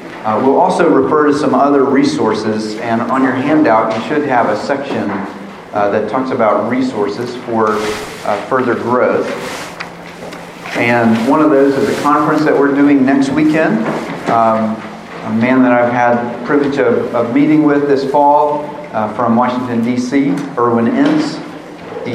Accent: American